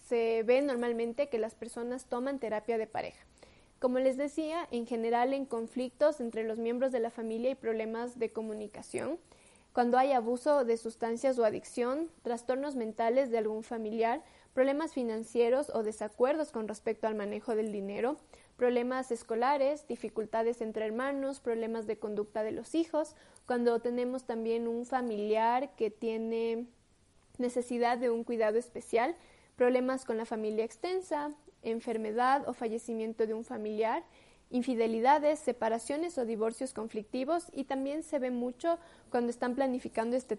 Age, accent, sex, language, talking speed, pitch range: 20-39, Mexican, female, Spanish, 145 wpm, 225-260 Hz